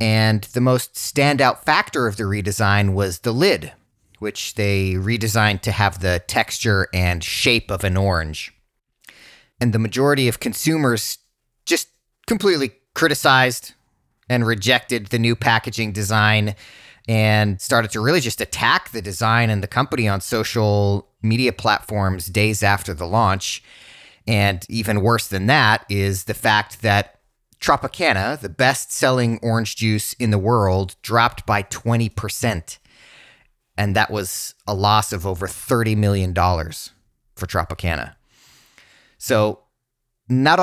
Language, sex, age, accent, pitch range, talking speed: English, male, 30-49, American, 100-120 Hz, 130 wpm